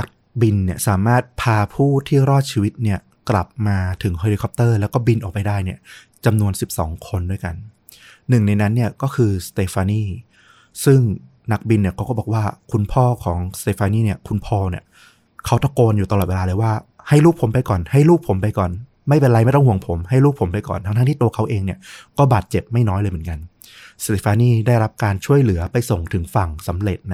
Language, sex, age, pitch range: Thai, male, 20-39, 100-120 Hz